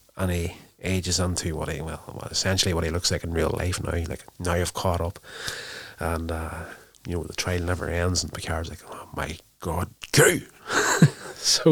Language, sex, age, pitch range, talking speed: English, male, 30-49, 85-100 Hz, 190 wpm